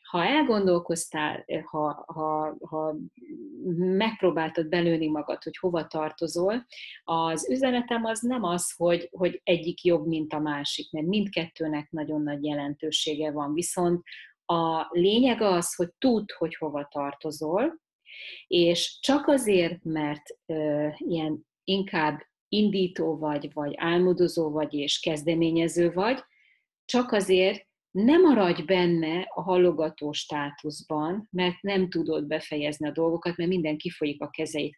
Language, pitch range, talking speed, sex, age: Hungarian, 155-185 Hz, 120 wpm, female, 30-49